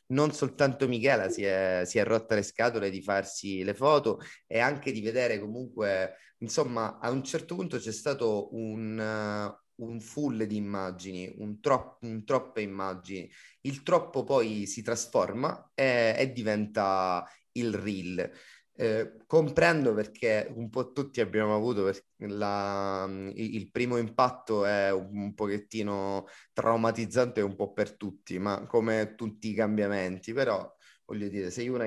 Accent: native